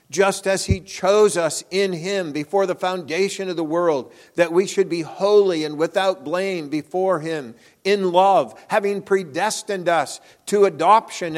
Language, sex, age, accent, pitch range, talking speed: English, male, 50-69, American, 130-185 Hz, 160 wpm